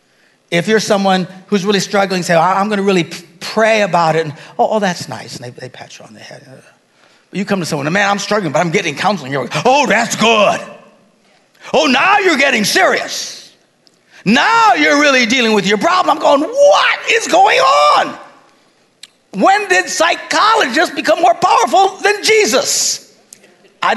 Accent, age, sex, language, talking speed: American, 50-69, male, English, 180 wpm